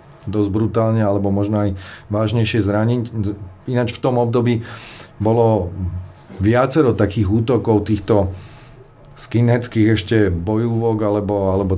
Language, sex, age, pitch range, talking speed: Slovak, male, 40-59, 105-120 Hz, 105 wpm